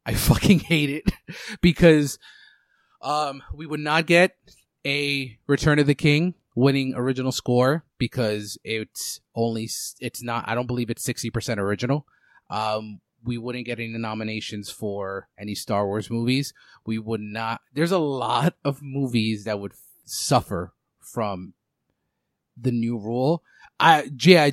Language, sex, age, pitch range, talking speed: English, male, 30-49, 110-140 Hz, 135 wpm